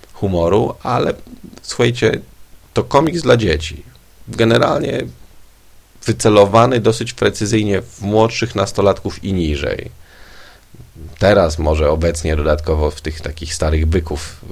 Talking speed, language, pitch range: 105 wpm, Polish, 80-100 Hz